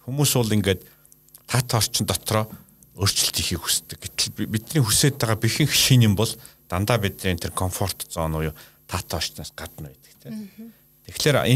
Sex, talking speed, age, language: male, 60 wpm, 50-69, Russian